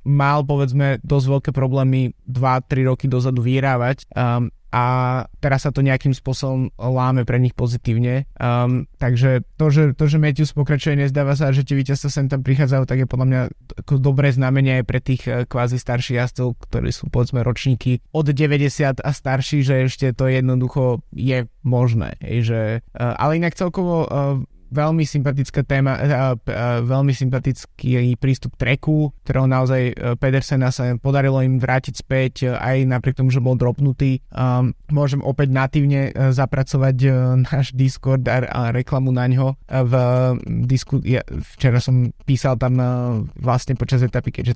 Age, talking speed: 20-39, 150 wpm